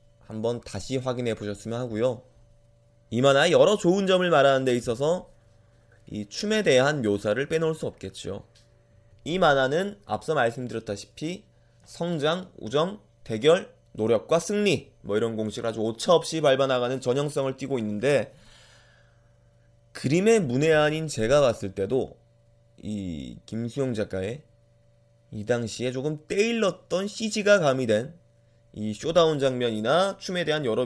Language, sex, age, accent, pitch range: Korean, male, 20-39, native, 115-155 Hz